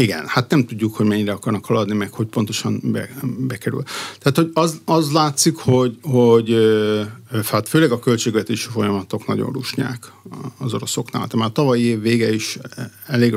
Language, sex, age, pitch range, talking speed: Hungarian, male, 50-69, 105-125 Hz, 165 wpm